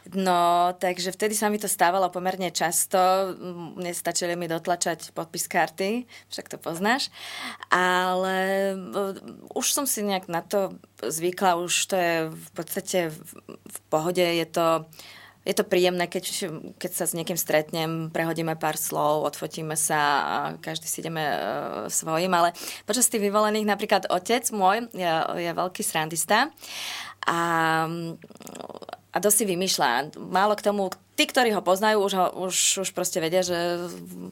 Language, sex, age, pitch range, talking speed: Slovak, female, 20-39, 170-195 Hz, 145 wpm